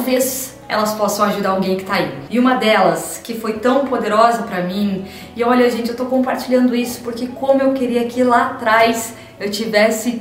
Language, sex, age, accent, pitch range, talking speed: Portuguese, female, 20-39, Brazilian, 210-255 Hz, 195 wpm